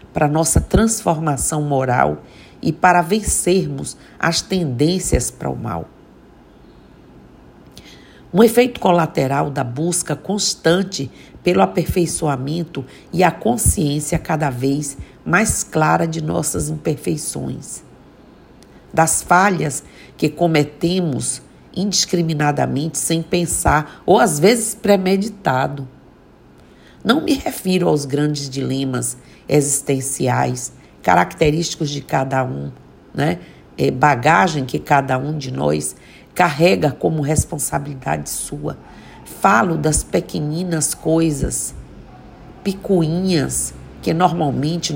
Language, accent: Portuguese, Brazilian